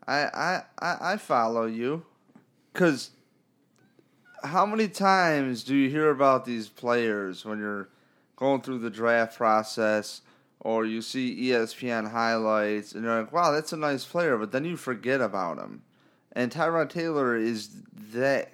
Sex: male